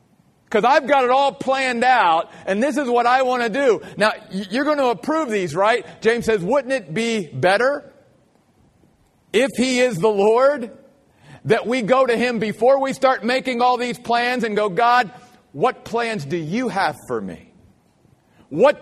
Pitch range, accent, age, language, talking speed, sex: 165-245 Hz, American, 50-69, English, 180 wpm, male